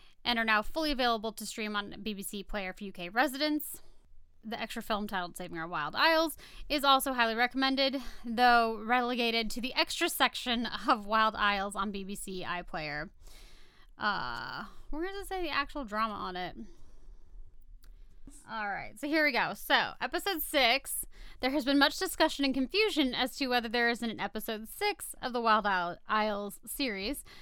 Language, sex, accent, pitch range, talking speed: English, female, American, 210-275 Hz, 165 wpm